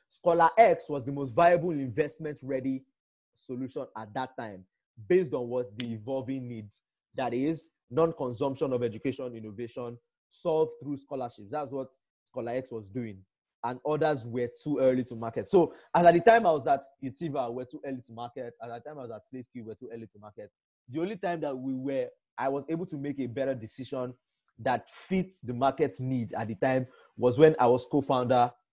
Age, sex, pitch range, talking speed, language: 20-39, male, 115-135 Hz, 195 wpm, English